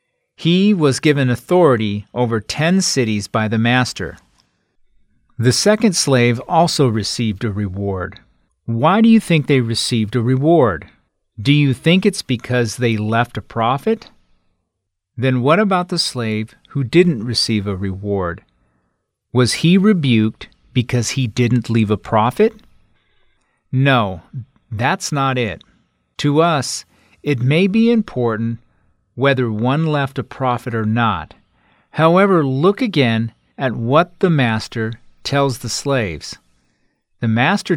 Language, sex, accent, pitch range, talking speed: English, male, American, 110-145 Hz, 130 wpm